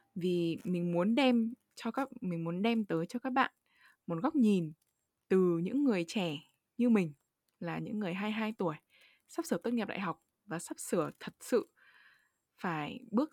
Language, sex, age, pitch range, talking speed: Vietnamese, female, 20-39, 170-245 Hz, 180 wpm